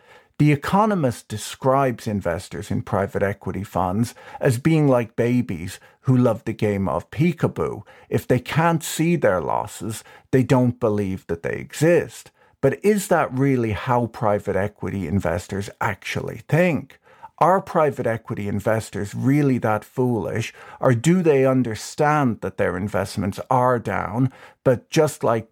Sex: male